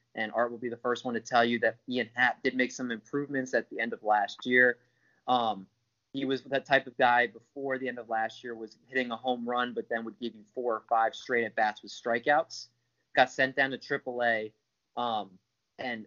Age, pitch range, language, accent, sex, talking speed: 20-39, 115-135 Hz, English, American, male, 225 wpm